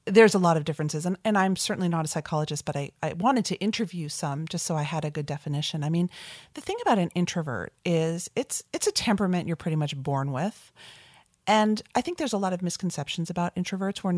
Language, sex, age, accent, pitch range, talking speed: English, female, 40-59, American, 150-190 Hz, 230 wpm